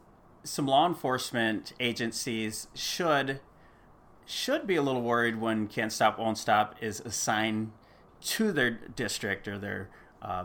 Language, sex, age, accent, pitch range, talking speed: English, male, 30-49, American, 105-135 Hz, 130 wpm